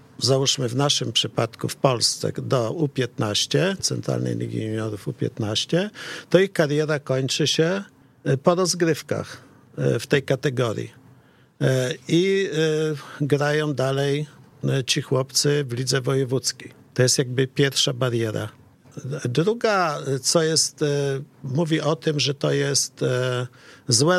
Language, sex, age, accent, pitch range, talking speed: Polish, male, 50-69, native, 130-155 Hz, 110 wpm